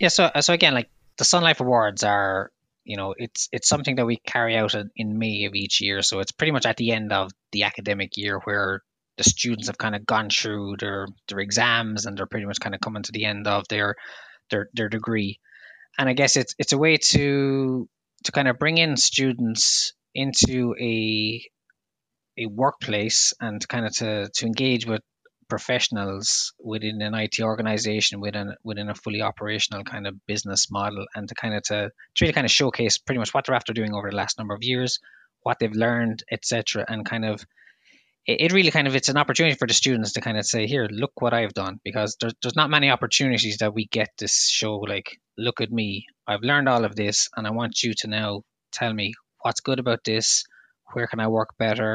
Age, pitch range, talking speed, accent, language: 20-39, 105-120 Hz, 215 wpm, Irish, English